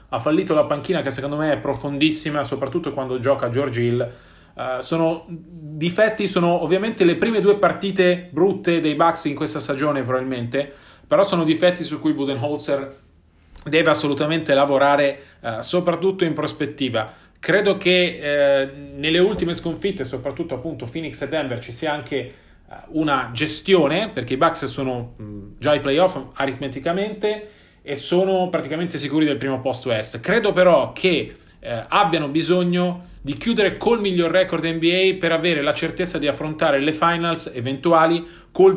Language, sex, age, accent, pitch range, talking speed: Italian, male, 30-49, native, 130-170 Hz, 145 wpm